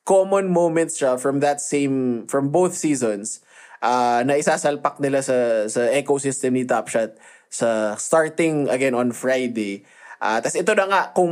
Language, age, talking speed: Filipino, 20-39, 155 wpm